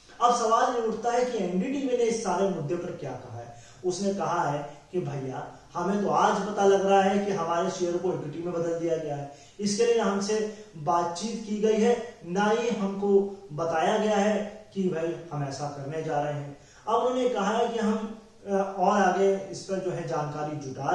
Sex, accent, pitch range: male, native, 165-205 Hz